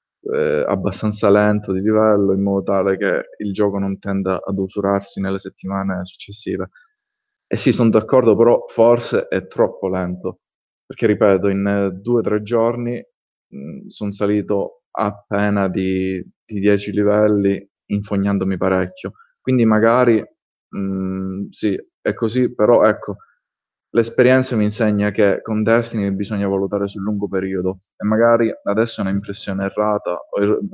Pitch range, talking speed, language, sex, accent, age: 100-115 Hz, 135 wpm, Italian, male, native, 20-39